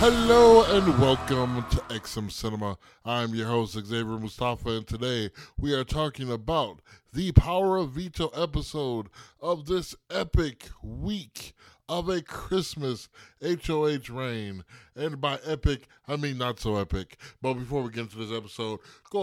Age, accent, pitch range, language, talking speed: 20-39, American, 105-150 Hz, English, 145 wpm